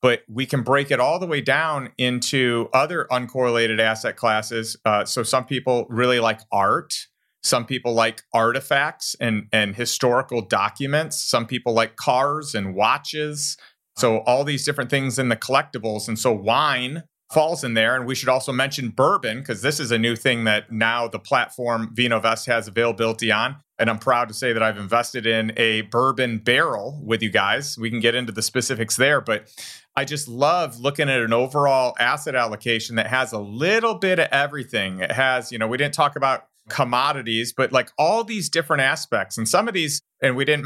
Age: 30-49